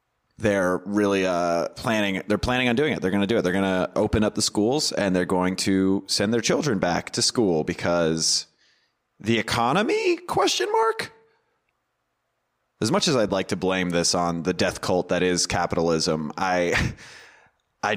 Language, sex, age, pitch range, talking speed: English, male, 30-49, 90-120 Hz, 175 wpm